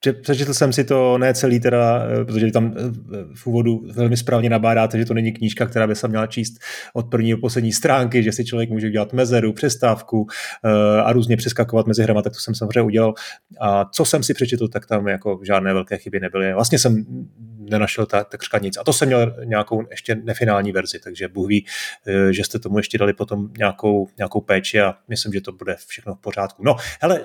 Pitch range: 110-150 Hz